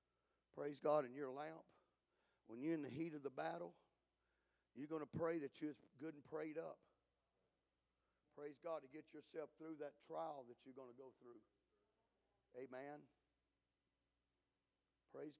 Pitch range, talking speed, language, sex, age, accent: 125-165 Hz, 150 wpm, English, male, 50-69, American